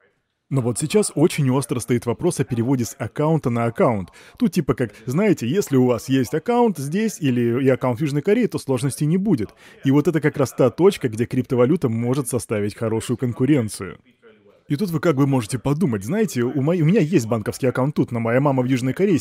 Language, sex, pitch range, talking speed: Russian, male, 120-155 Hz, 210 wpm